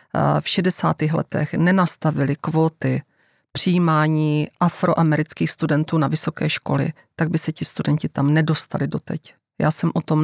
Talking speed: 135 wpm